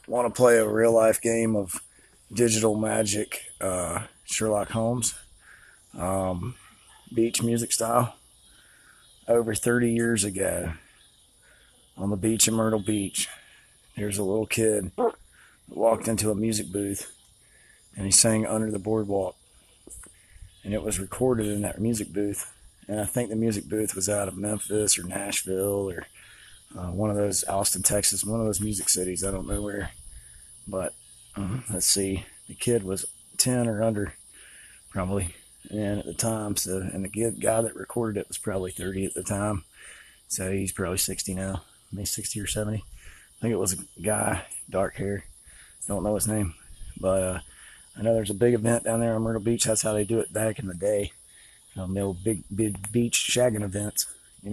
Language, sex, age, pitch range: English, male, 30-49, 95-110 Hz